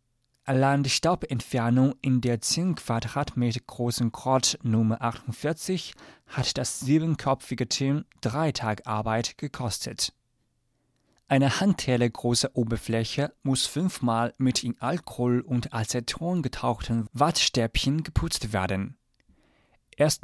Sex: male